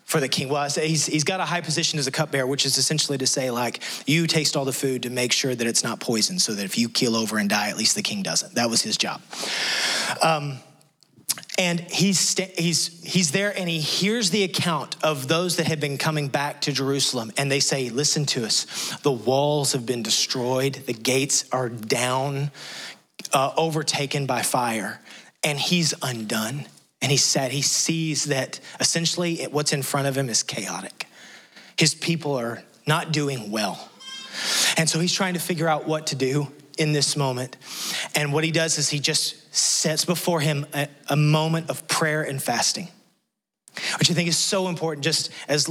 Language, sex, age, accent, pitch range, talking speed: English, male, 30-49, American, 135-165 Hz, 195 wpm